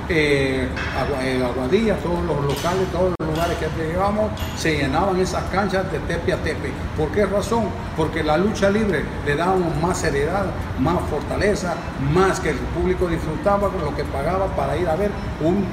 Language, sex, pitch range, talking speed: Spanish, male, 150-190 Hz, 170 wpm